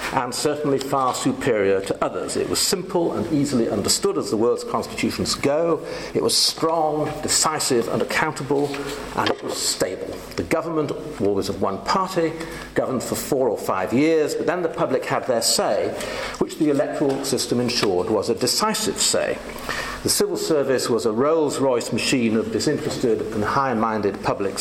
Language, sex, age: English, male, 50-69